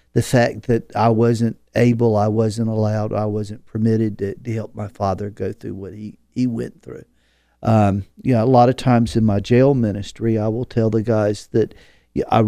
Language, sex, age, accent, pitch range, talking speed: English, male, 50-69, American, 110-130 Hz, 190 wpm